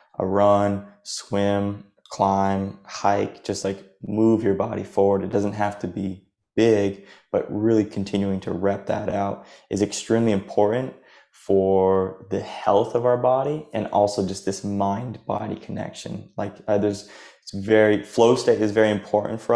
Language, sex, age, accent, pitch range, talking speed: English, male, 20-39, American, 100-105 Hz, 155 wpm